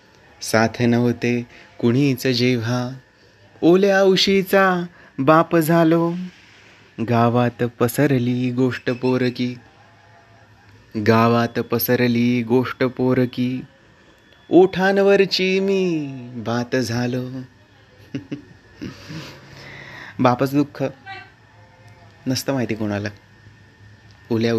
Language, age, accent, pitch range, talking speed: Marathi, 30-49, native, 110-130 Hz, 65 wpm